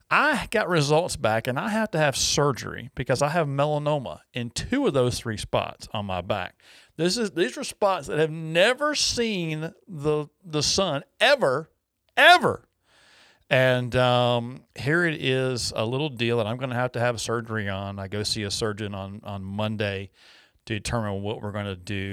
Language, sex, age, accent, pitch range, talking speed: English, male, 50-69, American, 105-140 Hz, 185 wpm